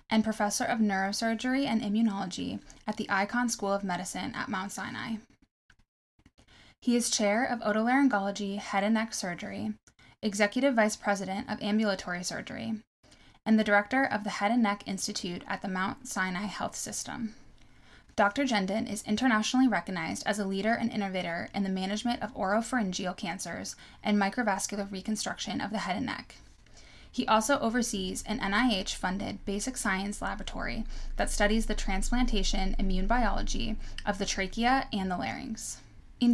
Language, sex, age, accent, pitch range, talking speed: English, female, 10-29, American, 200-235 Hz, 150 wpm